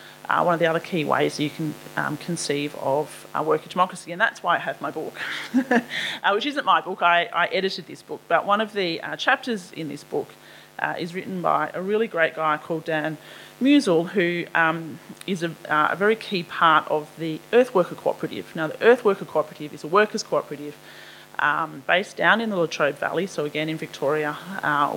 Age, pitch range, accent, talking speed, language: 30-49, 155-190 Hz, Australian, 205 wpm, English